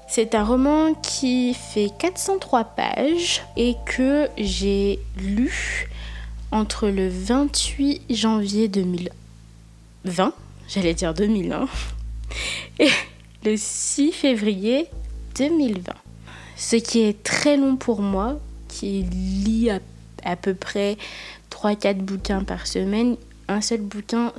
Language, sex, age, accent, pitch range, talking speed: French, female, 20-39, French, 185-230 Hz, 105 wpm